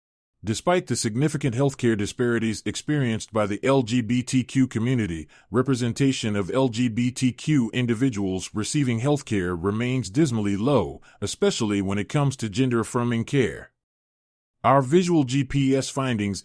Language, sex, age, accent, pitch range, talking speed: English, male, 30-49, American, 110-140 Hz, 115 wpm